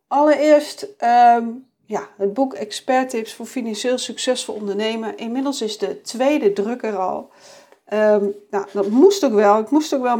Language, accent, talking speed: Dutch, Dutch, 165 wpm